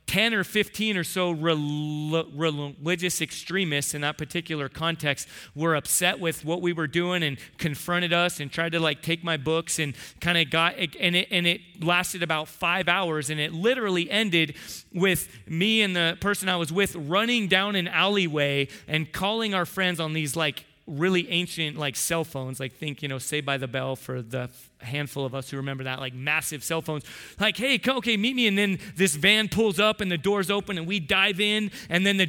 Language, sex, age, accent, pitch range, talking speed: English, male, 30-49, American, 145-195 Hz, 200 wpm